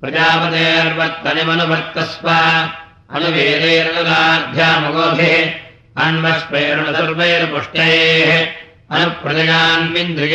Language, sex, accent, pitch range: Russian, male, Indian, 160-165 Hz